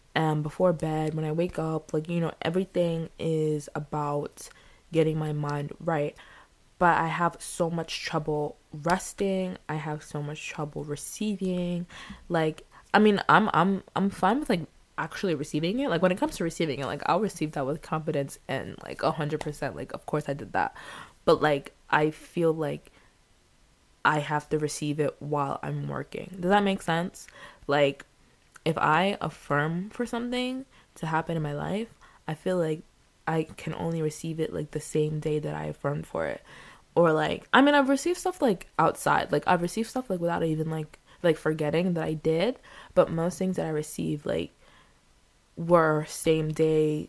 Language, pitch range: English, 150-180 Hz